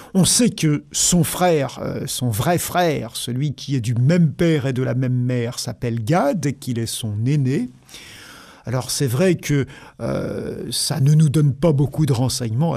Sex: male